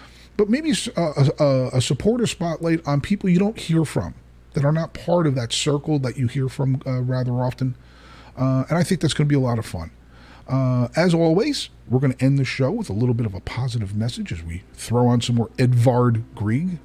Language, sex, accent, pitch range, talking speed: English, male, American, 115-160 Hz, 230 wpm